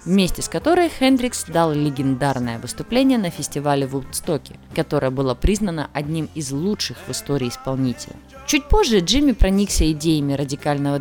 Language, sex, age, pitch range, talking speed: Russian, female, 20-39, 140-210 Hz, 140 wpm